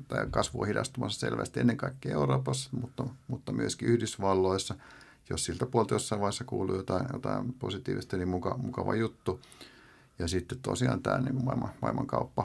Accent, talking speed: native, 145 wpm